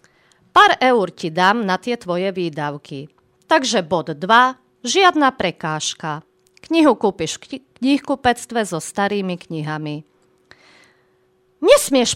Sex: female